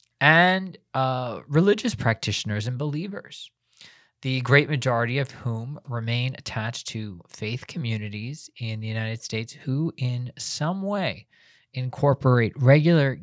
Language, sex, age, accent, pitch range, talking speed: English, male, 20-39, American, 110-135 Hz, 120 wpm